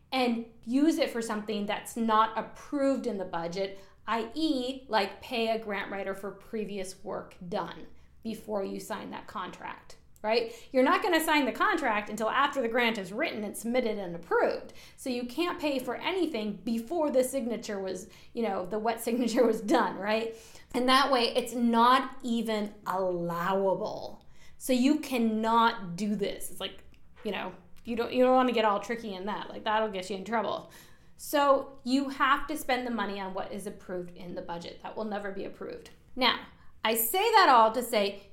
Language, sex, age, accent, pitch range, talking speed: English, female, 20-39, American, 210-280 Hz, 190 wpm